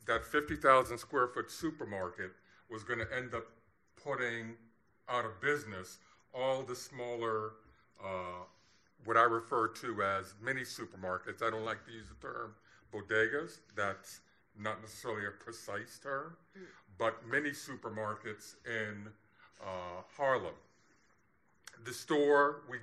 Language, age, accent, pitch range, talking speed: English, 50-69, American, 105-125 Hz, 125 wpm